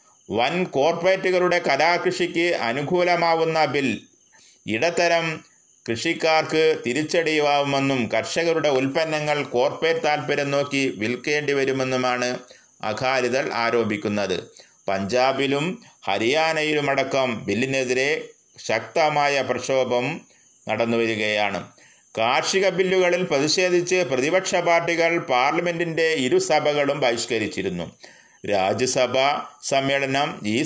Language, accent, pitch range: Malayalam, native, 130-170 Hz